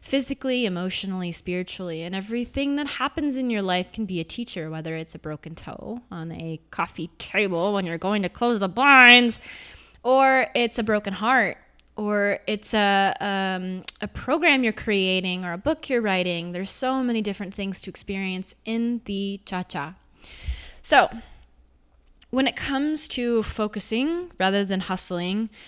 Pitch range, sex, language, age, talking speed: 180-240 Hz, female, English, 20-39, 155 wpm